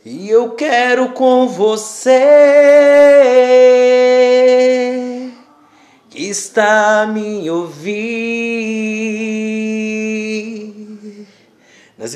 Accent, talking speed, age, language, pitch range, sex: Brazilian, 55 wpm, 30-49, Portuguese, 190-250 Hz, male